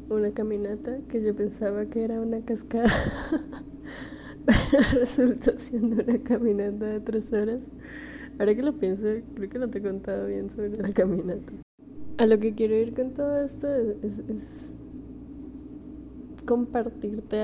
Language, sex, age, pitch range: English, female, 10-29, 210-275 Hz